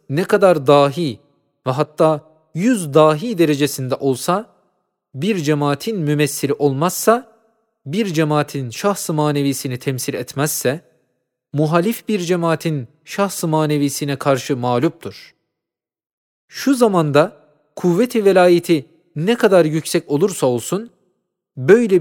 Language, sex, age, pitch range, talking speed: Turkish, male, 40-59, 145-185 Hz, 100 wpm